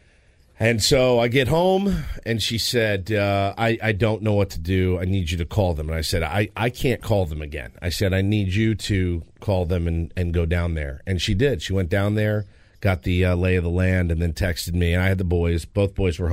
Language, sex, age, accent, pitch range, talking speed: English, male, 40-59, American, 90-115 Hz, 255 wpm